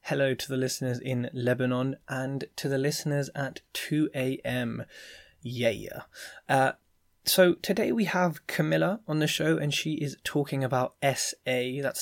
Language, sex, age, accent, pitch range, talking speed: English, male, 20-39, British, 125-145 Hz, 150 wpm